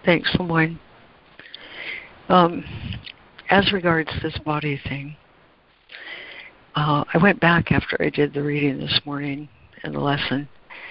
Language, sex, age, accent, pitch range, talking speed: English, female, 60-79, American, 140-165 Hz, 120 wpm